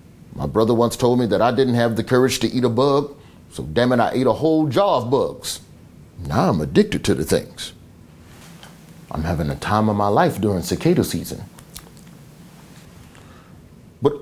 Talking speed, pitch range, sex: 175 wpm, 115-175 Hz, male